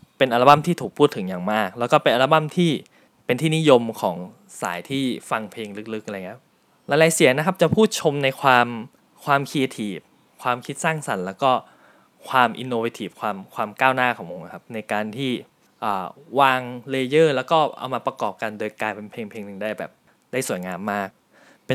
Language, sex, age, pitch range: Thai, male, 20-39, 110-155 Hz